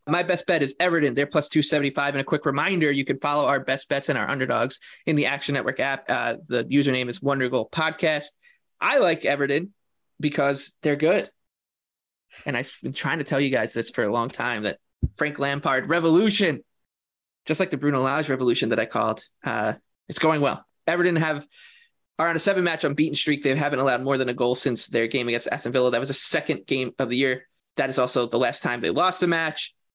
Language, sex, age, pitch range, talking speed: English, male, 20-39, 135-160 Hz, 220 wpm